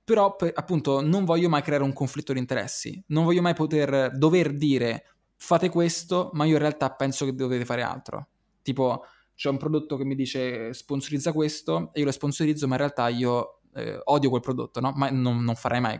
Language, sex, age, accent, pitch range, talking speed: Italian, male, 20-39, native, 125-165 Hz, 205 wpm